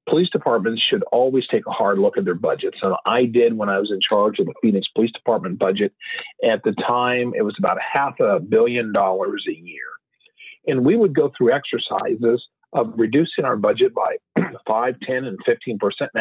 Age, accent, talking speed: 40-59, American, 200 wpm